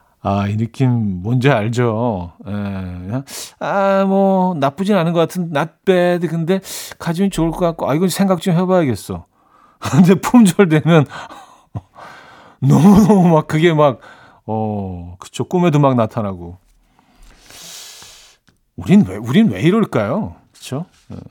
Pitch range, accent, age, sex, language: 115-170 Hz, native, 40-59, male, Korean